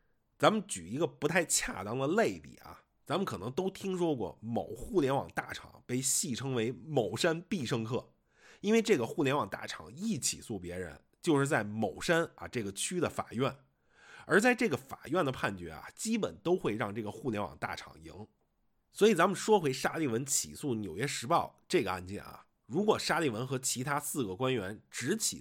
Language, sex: Chinese, male